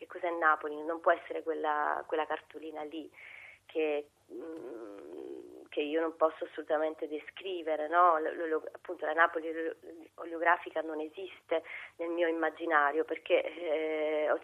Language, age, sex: Italian, 30-49, female